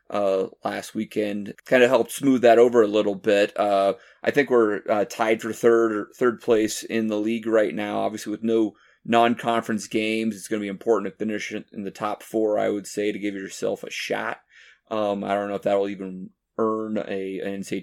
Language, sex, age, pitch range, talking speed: English, male, 30-49, 100-115 Hz, 210 wpm